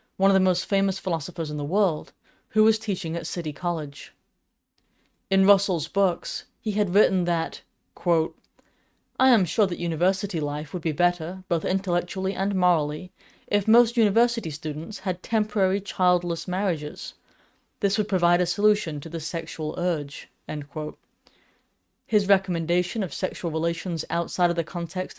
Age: 30-49